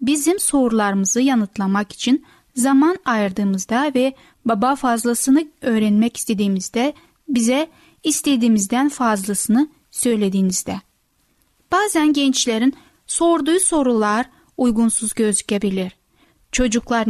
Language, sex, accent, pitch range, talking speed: Turkish, female, native, 215-275 Hz, 75 wpm